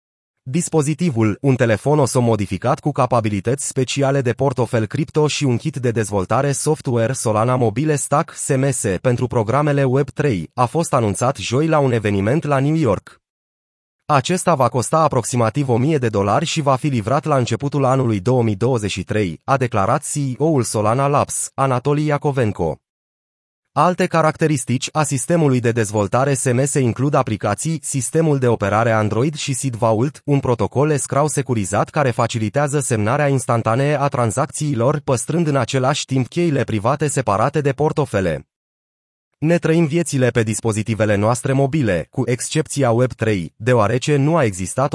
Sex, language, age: male, Romanian, 20-39